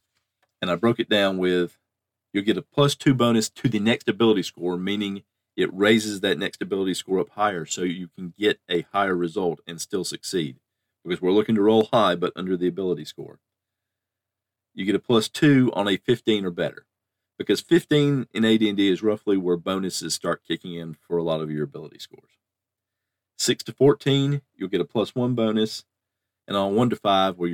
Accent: American